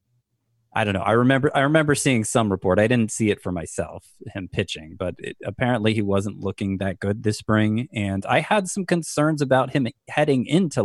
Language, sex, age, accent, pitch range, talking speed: English, male, 20-39, American, 100-135 Hz, 205 wpm